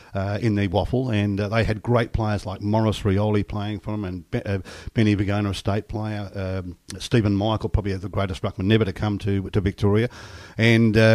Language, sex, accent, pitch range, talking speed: English, male, Australian, 100-125 Hz, 205 wpm